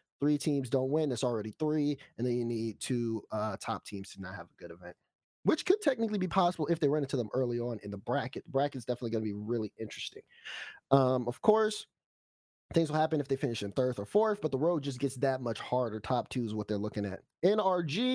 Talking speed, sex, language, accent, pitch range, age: 245 wpm, male, English, American, 130-200 Hz, 30-49